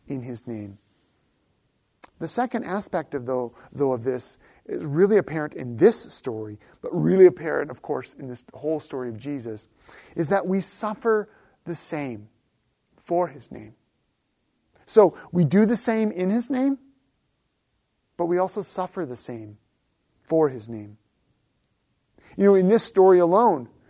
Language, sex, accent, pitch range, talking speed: English, male, American, 150-195 Hz, 150 wpm